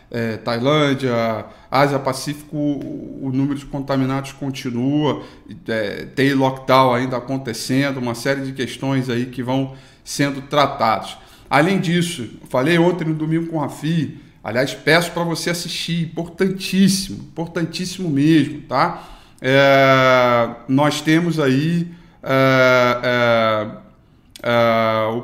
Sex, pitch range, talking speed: male, 130-165 Hz, 105 wpm